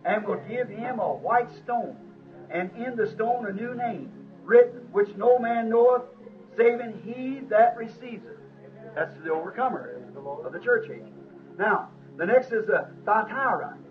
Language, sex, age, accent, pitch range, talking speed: English, male, 50-69, American, 205-255 Hz, 160 wpm